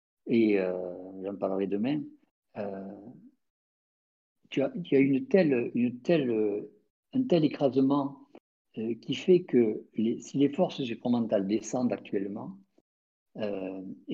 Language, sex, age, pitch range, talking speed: French, male, 50-69, 100-130 Hz, 100 wpm